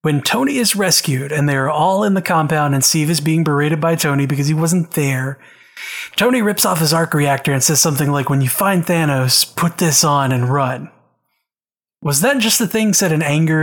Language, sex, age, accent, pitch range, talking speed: English, male, 30-49, American, 140-175 Hz, 215 wpm